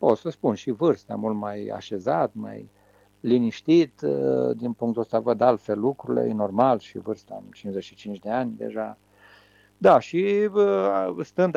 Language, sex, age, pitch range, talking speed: Romanian, male, 50-69, 100-140 Hz, 145 wpm